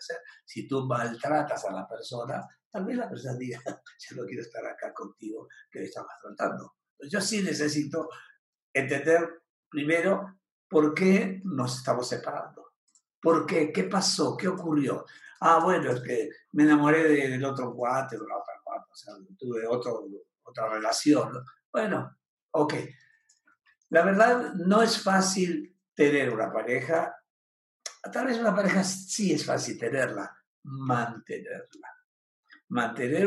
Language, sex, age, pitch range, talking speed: Spanish, male, 60-79, 150-205 Hz, 140 wpm